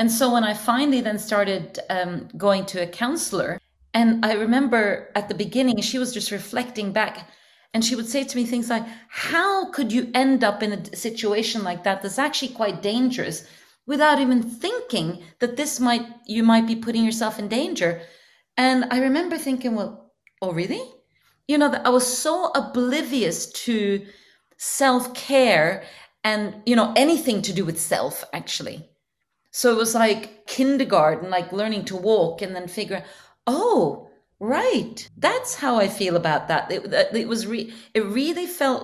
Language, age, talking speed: English, 40-59, 170 wpm